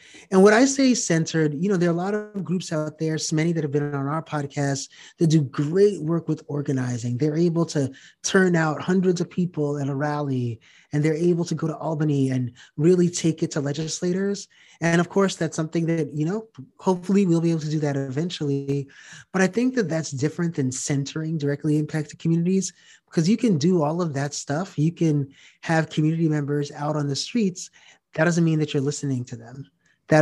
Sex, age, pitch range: male, 30-49, 140-165 Hz